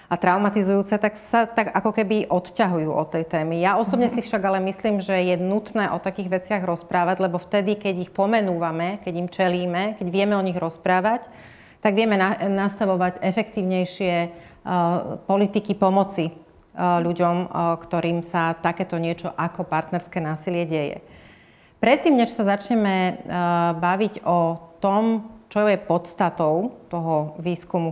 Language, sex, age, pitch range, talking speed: Slovak, female, 30-49, 170-210 Hz, 150 wpm